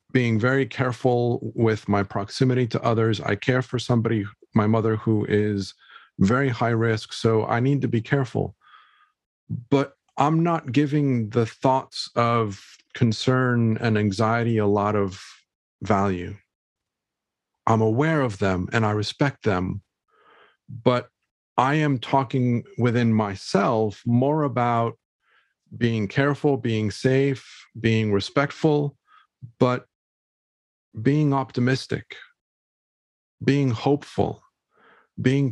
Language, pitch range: English, 110-135 Hz